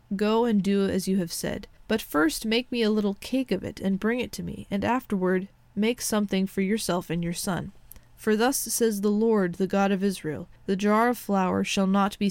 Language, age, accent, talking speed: English, 20-39, American, 225 wpm